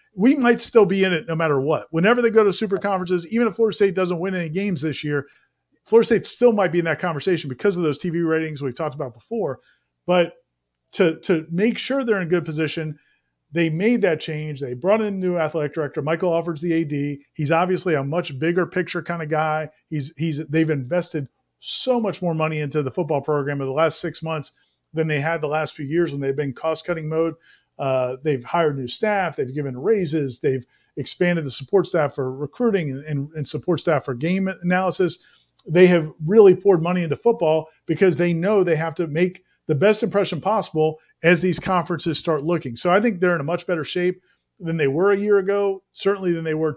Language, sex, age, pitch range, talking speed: English, male, 40-59, 155-185 Hz, 215 wpm